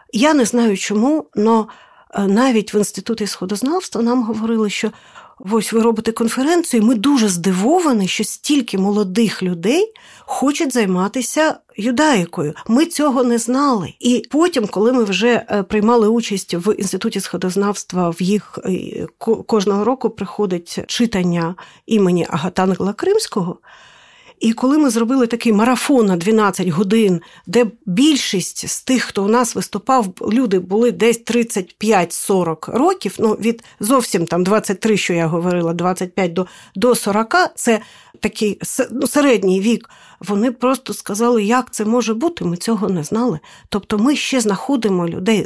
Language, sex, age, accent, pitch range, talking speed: Ukrainian, female, 50-69, native, 195-245 Hz, 135 wpm